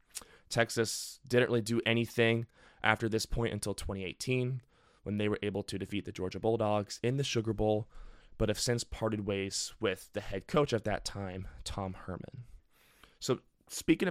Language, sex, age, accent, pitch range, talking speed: English, male, 20-39, American, 95-115 Hz, 165 wpm